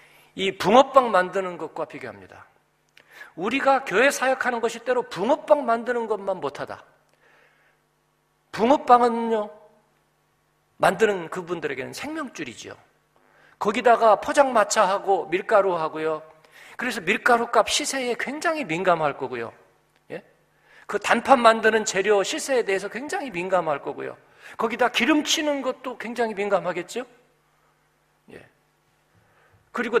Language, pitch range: Korean, 180-245 Hz